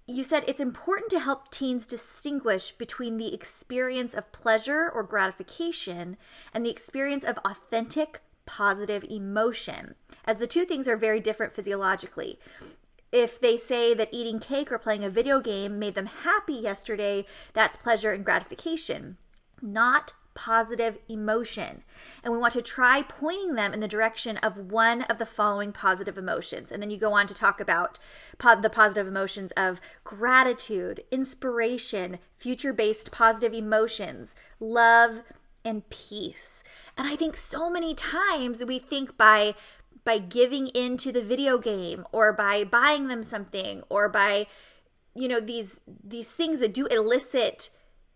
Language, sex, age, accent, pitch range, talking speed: English, female, 20-39, American, 210-265 Hz, 150 wpm